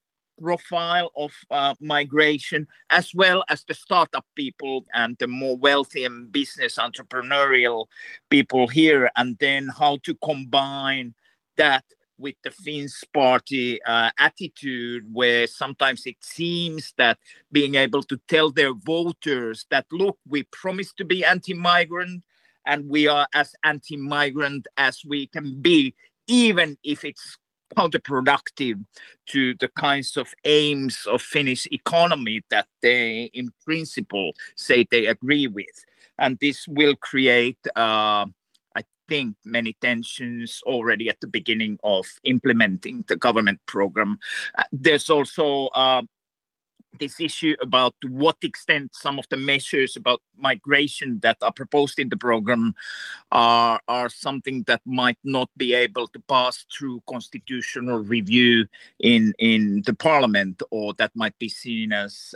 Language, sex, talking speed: Finnish, male, 135 wpm